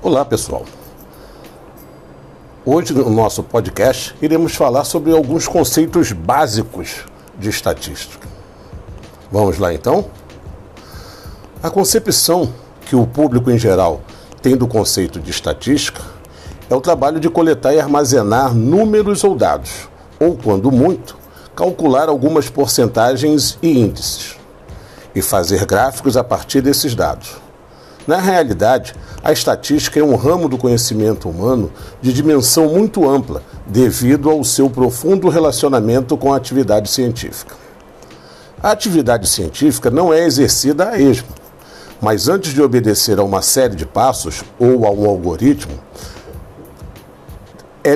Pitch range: 105-150 Hz